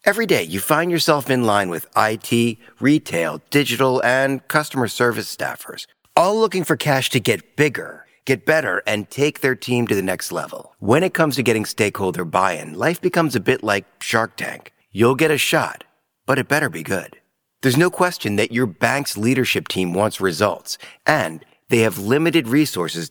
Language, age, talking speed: English, 40-59, 180 wpm